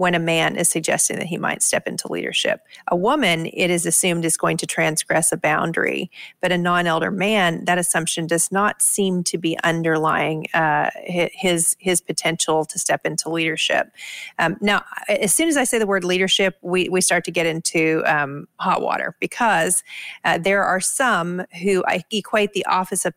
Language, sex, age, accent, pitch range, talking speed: English, female, 40-59, American, 165-195 Hz, 185 wpm